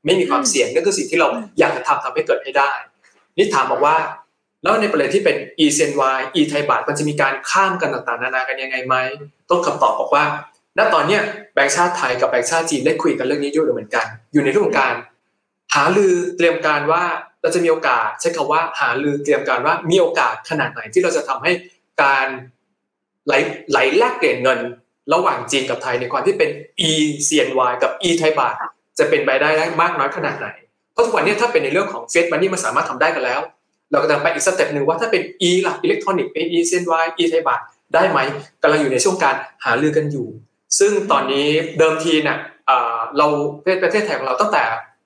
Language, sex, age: Thai, male, 20-39